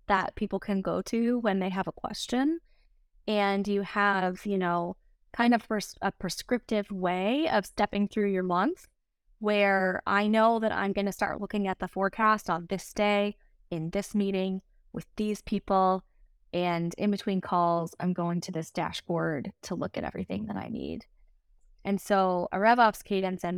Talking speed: 175 wpm